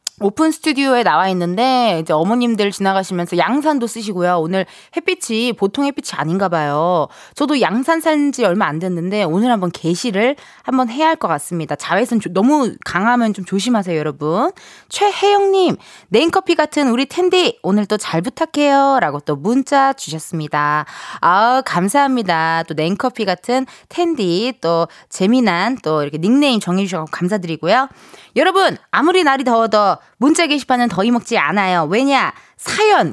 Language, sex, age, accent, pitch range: Korean, female, 20-39, native, 175-275 Hz